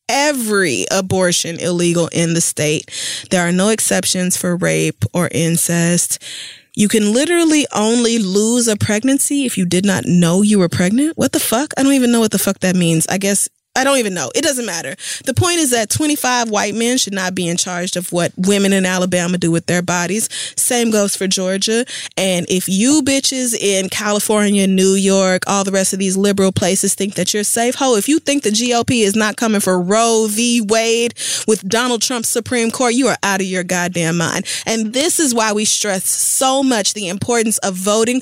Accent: American